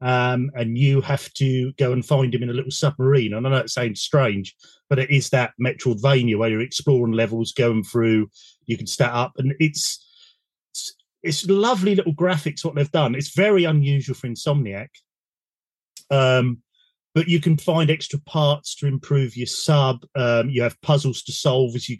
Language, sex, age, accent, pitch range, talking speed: English, male, 40-59, British, 120-150 Hz, 185 wpm